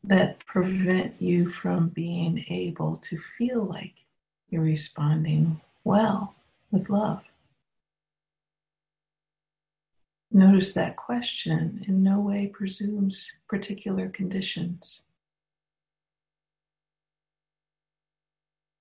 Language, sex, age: English, female, 50-69